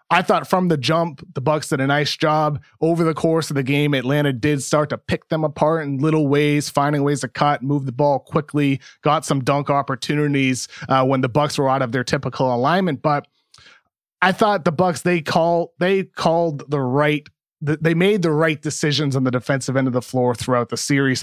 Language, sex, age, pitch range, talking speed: English, male, 30-49, 135-170 Hz, 205 wpm